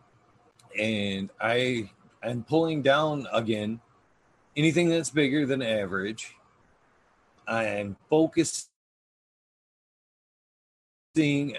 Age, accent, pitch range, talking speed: 30-49, American, 110-140 Hz, 70 wpm